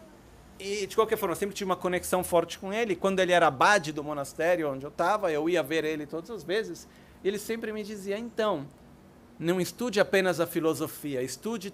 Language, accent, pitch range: Italian, Brazilian, 150-200 Hz